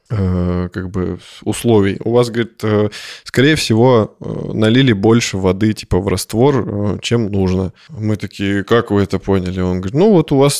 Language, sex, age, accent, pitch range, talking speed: Russian, male, 20-39, native, 105-135 Hz, 160 wpm